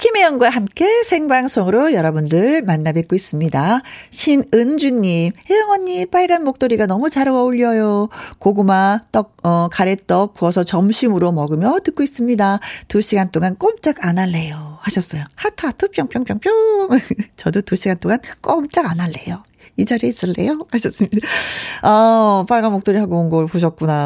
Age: 40-59